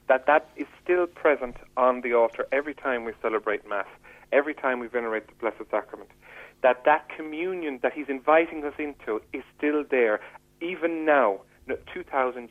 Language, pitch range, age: English, 130-180 Hz, 40-59